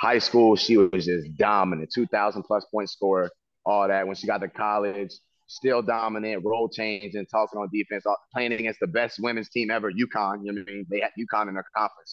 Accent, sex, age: American, male, 30-49